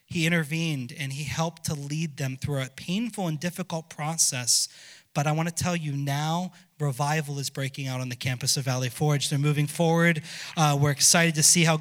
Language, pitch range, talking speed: English, 150-180 Hz, 205 wpm